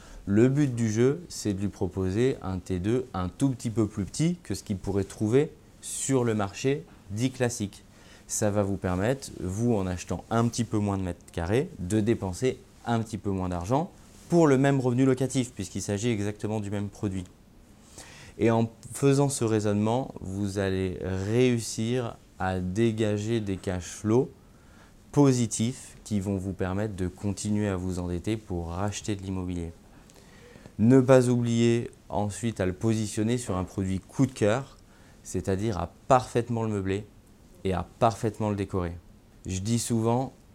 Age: 30-49